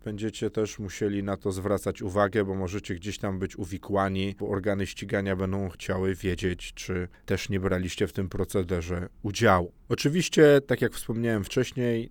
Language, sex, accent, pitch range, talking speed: Polish, male, native, 100-135 Hz, 160 wpm